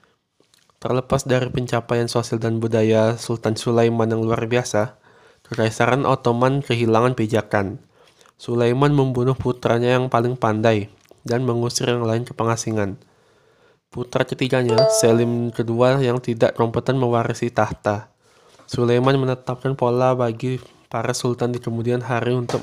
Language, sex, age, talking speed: Indonesian, male, 20-39, 120 wpm